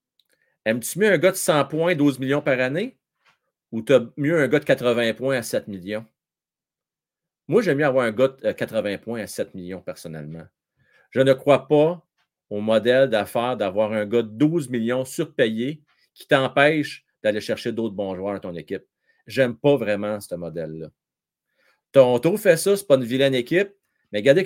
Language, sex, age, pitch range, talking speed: French, male, 40-59, 120-200 Hz, 185 wpm